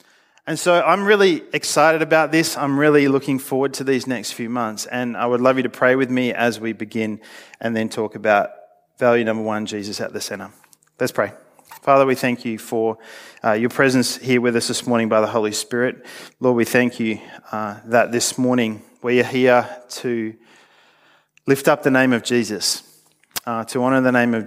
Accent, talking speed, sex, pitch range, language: Australian, 200 wpm, male, 110-125 Hz, English